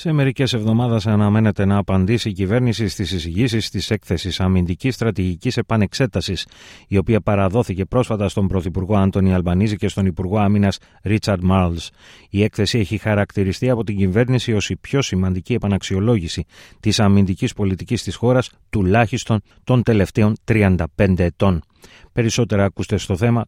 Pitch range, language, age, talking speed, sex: 95-120 Hz, Greek, 30-49, 140 wpm, male